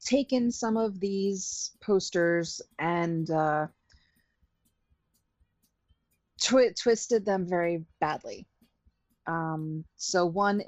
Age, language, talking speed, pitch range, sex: 30-49, English, 80 wpm, 150-230 Hz, female